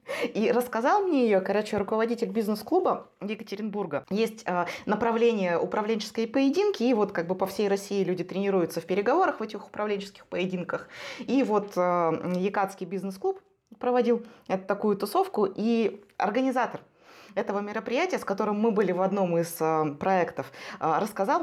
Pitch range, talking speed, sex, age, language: 185-245 Hz, 135 wpm, female, 20-39, Russian